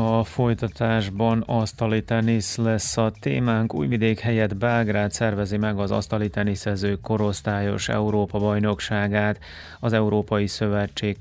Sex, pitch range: male, 105-115 Hz